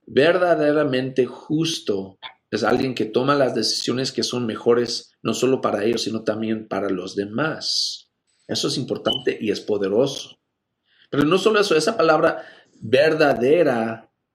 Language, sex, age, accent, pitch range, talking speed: Spanish, male, 50-69, Mexican, 115-160 Hz, 140 wpm